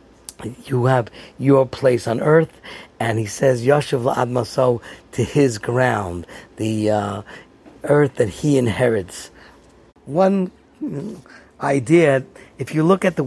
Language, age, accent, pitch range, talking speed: English, 50-69, American, 130-190 Hz, 120 wpm